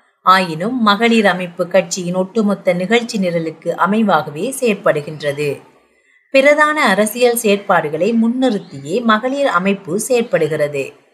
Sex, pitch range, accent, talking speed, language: female, 180-235 Hz, native, 85 wpm, Tamil